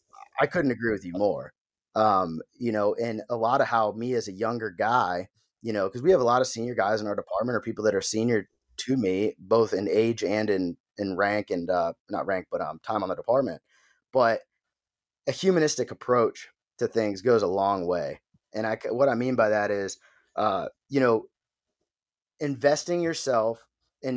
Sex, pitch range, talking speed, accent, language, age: male, 110-140 Hz, 195 wpm, American, English, 30-49